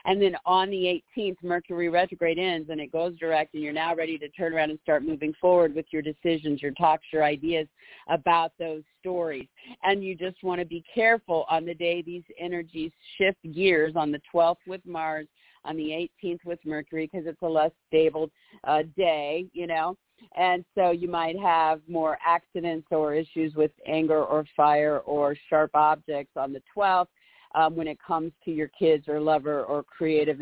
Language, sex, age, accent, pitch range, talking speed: English, female, 50-69, American, 145-170 Hz, 190 wpm